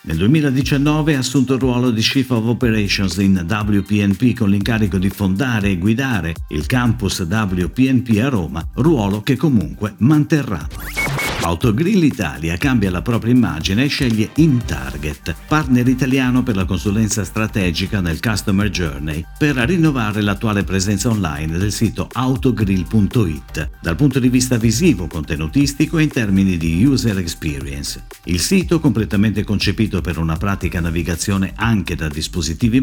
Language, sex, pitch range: Italian, male, 90-125 Hz